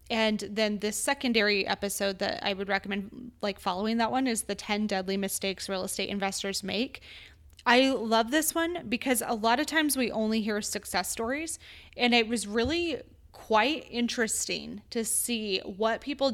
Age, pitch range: 20-39, 200-245 Hz